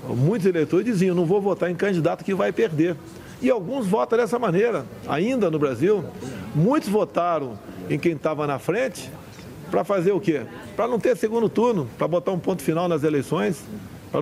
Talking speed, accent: 180 wpm, Brazilian